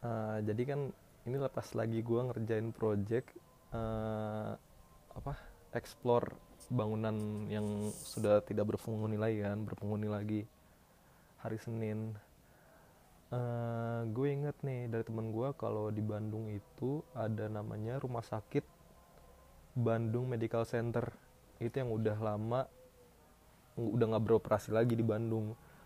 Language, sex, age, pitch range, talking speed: Indonesian, male, 20-39, 110-125 Hz, 115 wpm